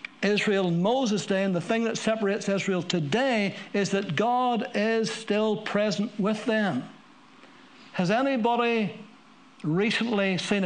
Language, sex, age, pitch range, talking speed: English, male, 60-79, 170-250 Hz, 130 wpm